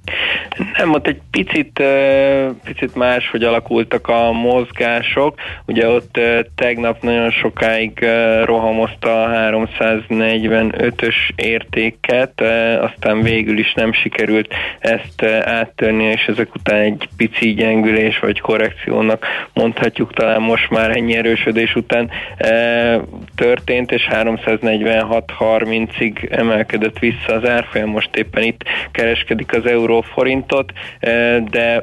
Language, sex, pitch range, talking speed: Hungarian, male, 110-115 Hz, 105 wpm